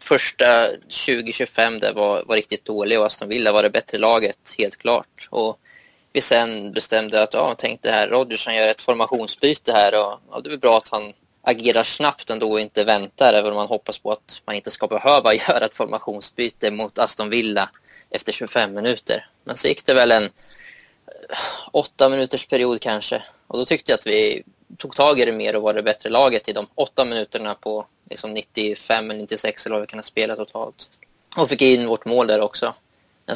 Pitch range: 105-125 Hz